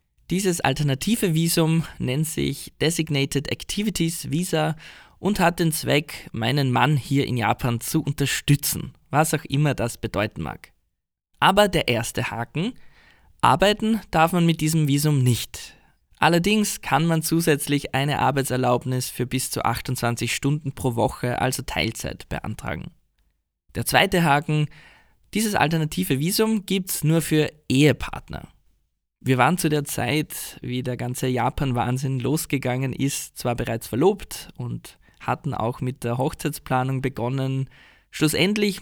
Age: 20-39